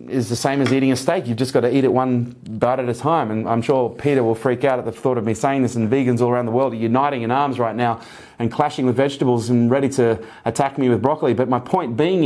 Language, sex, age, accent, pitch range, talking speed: English, male, 30-49, Australian, 120-140 Hz, 290 wpm